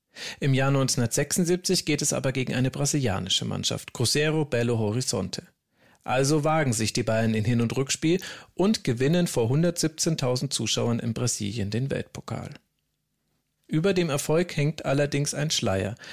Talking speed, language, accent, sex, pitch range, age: 140 wpm, German, German, male, 120-160 Hz, 40-59